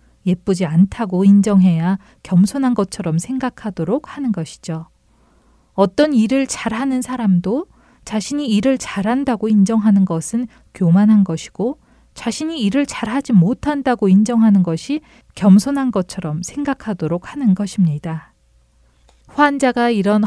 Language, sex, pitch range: Korean, female, 175-240 Hz